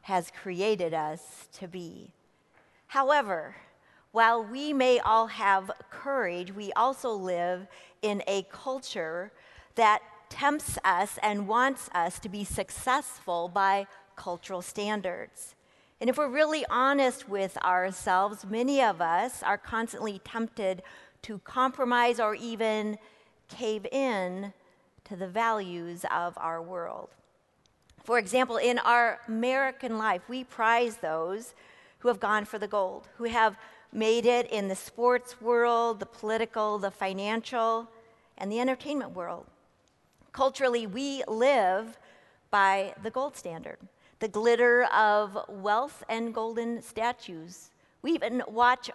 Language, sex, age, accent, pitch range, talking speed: English, female, 50-69, American, 195-245 Hz, 125 wpm